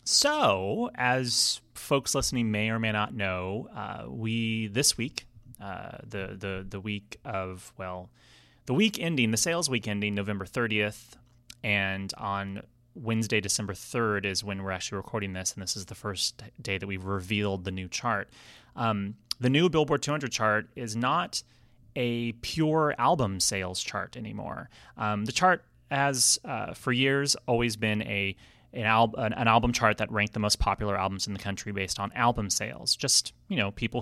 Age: 30-49